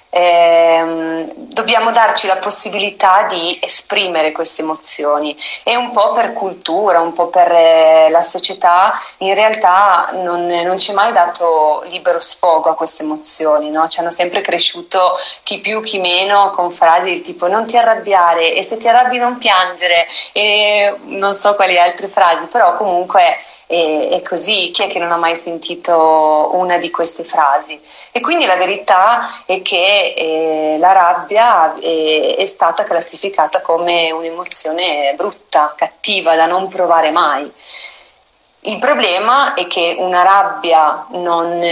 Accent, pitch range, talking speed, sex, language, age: native, 165-195 Hz, 145 wpm, female, Italian, 30-49